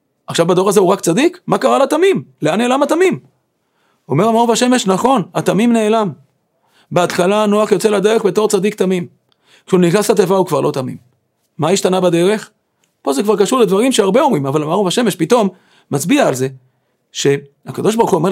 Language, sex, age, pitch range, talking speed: Hebrew, male, 40-59, 155-225 Hz, 165 wpm